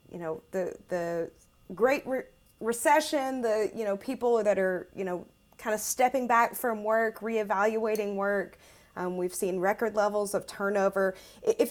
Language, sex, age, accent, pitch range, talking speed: English, female, 30-49, American, 190-235 Hz, 160 wpm